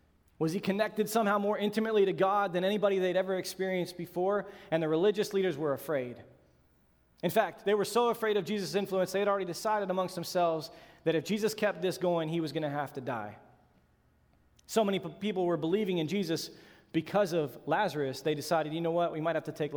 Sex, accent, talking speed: male, American, 205 wpm